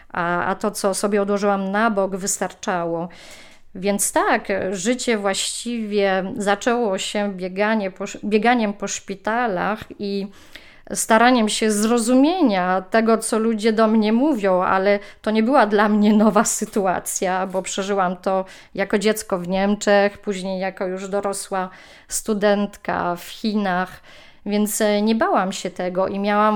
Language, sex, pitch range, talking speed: Polish, female, 190-225 Hz, 130 wpm